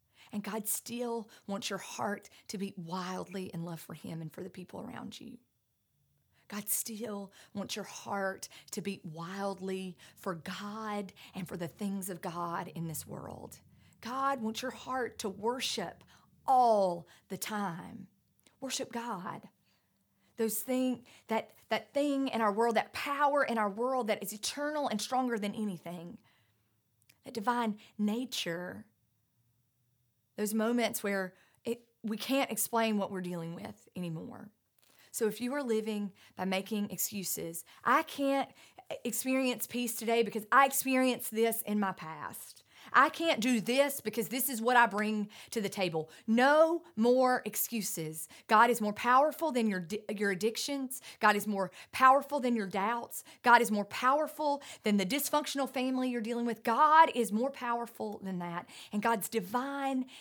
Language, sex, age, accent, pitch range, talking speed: English, female, 40-59, American, 190-245 Hz, 155 wpm